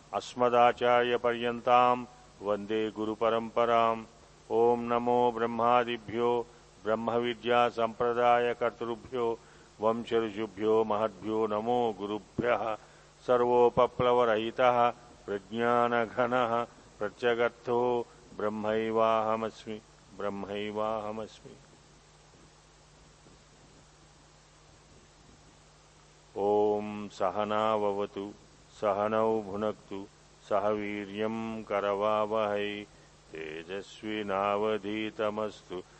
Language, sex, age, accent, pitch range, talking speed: Telugu, male, 50-69, native, 105-120 Hz, 35 wpm